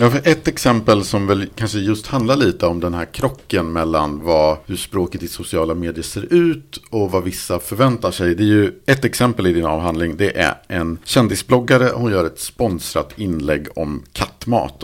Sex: male